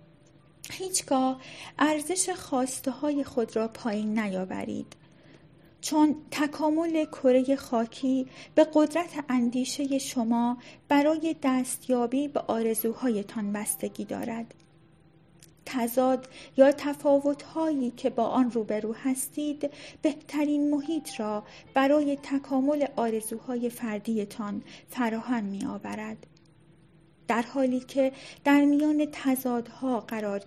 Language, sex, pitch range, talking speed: Persian, female, 210-275 Hz, 95 wpm